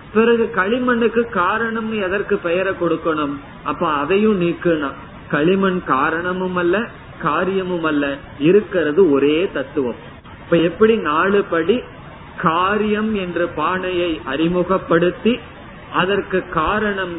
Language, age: Tamil, 30-49